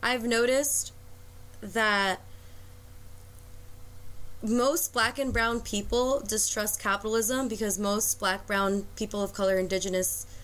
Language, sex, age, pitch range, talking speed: English, female, 20-39, 185-230 Hz, 105 wpm